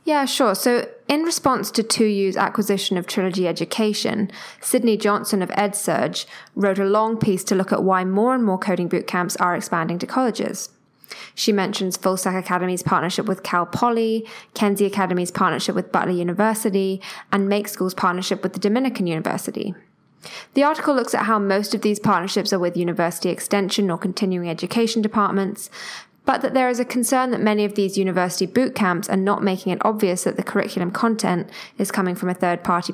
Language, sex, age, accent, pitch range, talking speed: English, female, 10-29, British, 185-220 Hz, 180 wpm